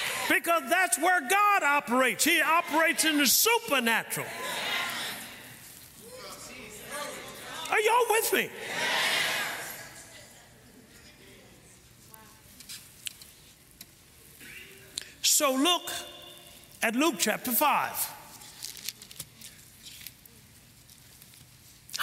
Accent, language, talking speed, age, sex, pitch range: American, English, 55 wpm, 50-69, male, 180-270 Hz